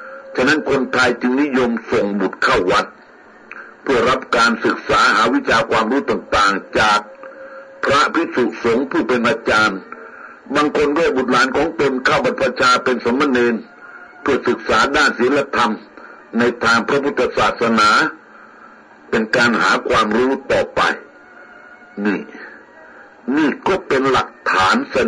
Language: Thai